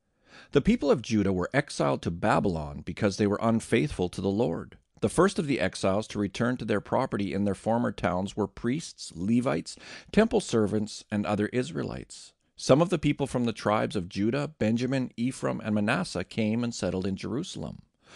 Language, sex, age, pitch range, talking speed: English, male, 40-59, 95-120 Hz, 180 wpm